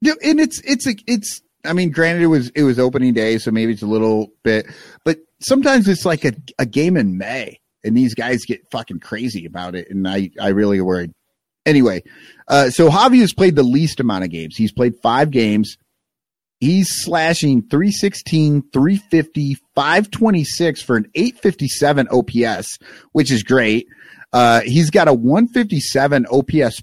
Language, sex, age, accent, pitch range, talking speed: English, male, 30-49, American, 125-195 Hz, 170 wpm